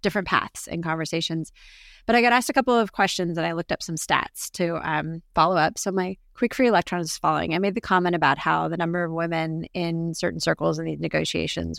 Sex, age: female, 30-49